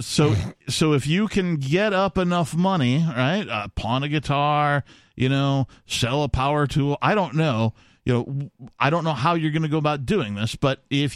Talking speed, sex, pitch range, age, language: 210 wpm, male, 115-155 Hz, 40-59, English